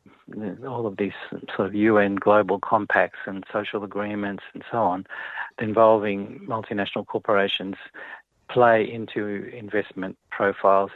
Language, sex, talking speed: English, male, 115 wpm